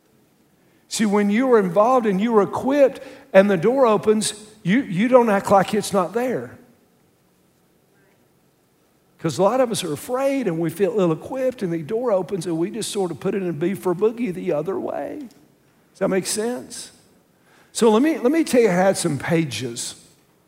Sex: male